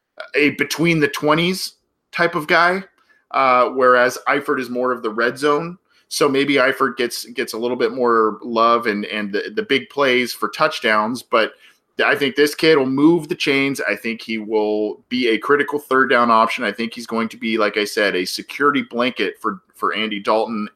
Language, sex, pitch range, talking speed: English, male, 120-150 Hz, 190 wpm